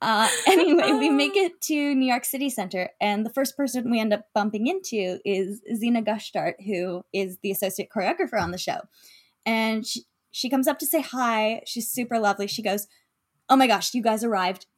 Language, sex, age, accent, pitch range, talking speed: English, female, 10-29, American, 220-300 Hz, 200 wpm